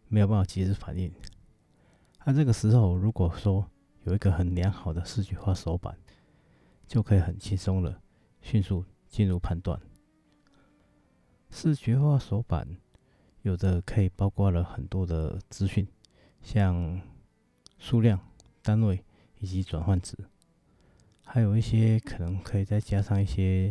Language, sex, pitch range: Chinese, male, 90-105 Hz